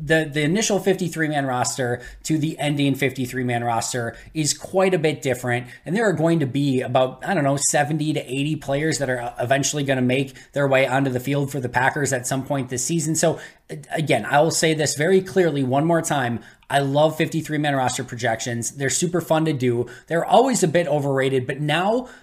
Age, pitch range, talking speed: 20-39, 130-165 Hz, 205 wpm